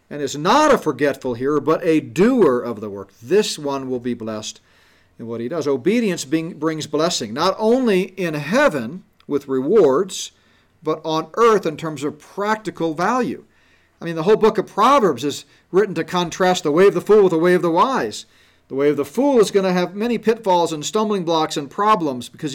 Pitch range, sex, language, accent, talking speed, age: 145-205 Hz, male, English, American, 205 wpm, 40-59